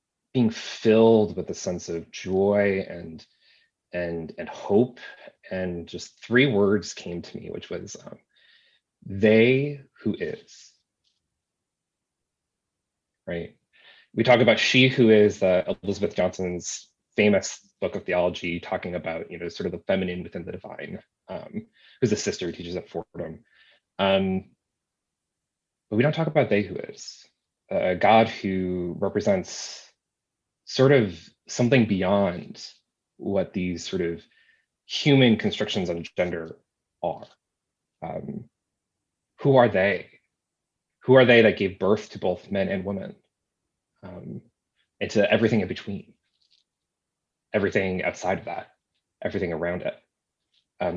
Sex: male